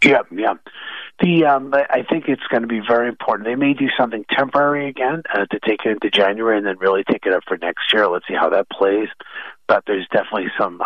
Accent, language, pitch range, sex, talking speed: American, English, 110-155 Hz, male, 230 wpm